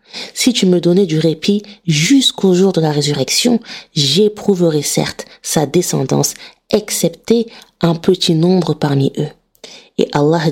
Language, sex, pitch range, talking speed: French, female, 150-200 Hz, 130 wpm